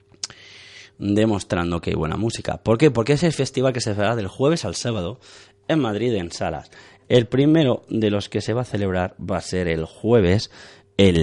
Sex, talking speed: male, 200 wpm